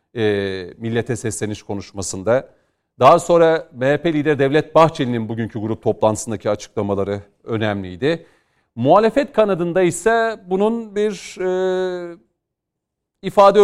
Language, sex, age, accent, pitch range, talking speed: Turkish, male, 40-59, native, 110-160 Hz, 95 wpm